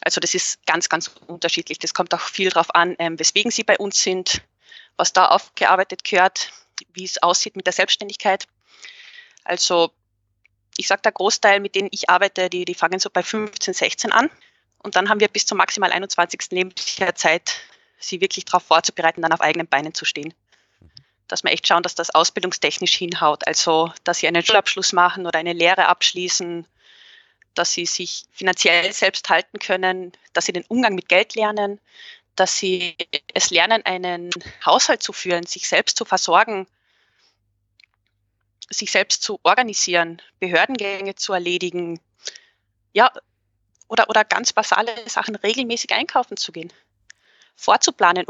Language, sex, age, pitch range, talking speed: German, female, 20-39, 170-210 Hz, 160 wpm